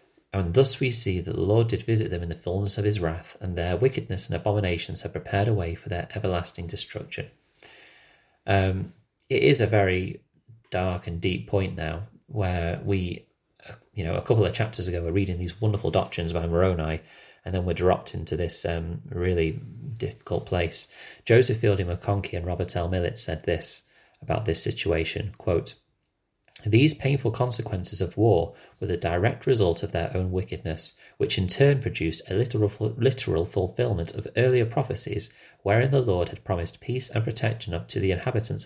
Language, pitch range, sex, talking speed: English, 90-115 Hz, male, 175 wpm